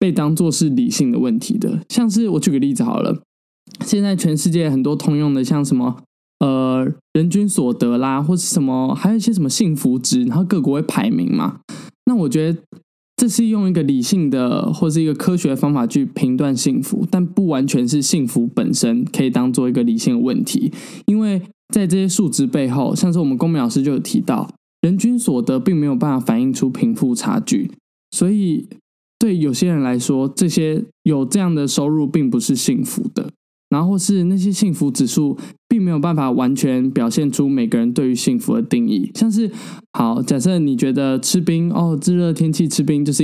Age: 10-29